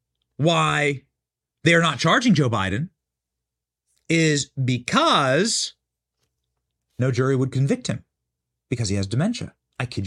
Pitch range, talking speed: 140-215 Hz, 115 wpm